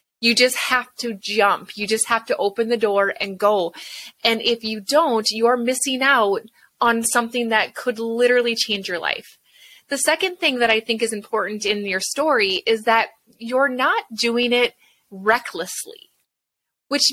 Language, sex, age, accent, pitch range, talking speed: English, female, 20-39, American, 215-275 Hz, 170 wpm